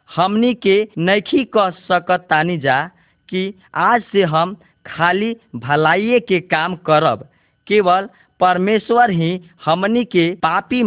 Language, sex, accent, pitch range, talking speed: Hindi, male, native, 165-205 Hz, 115 wpm